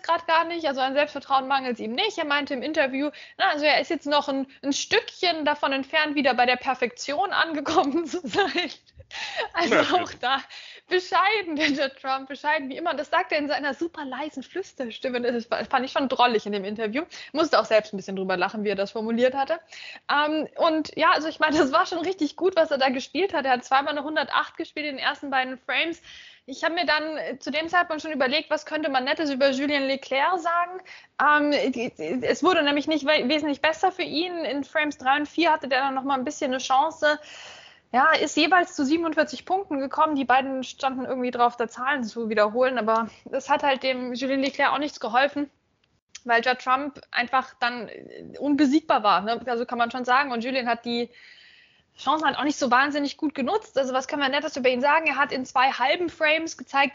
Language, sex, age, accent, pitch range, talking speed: German, female, 20-39, German, 260-320 Hz, 210 wpm